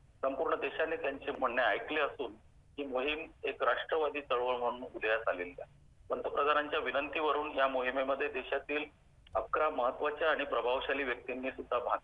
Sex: male